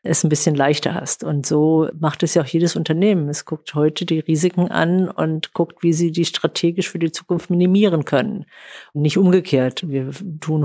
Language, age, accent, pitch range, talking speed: German, 50-69, German, 150-175 Hz, 195 wpm